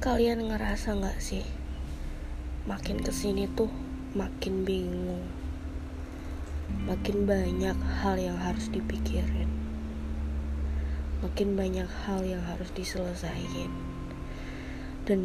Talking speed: 85 wpm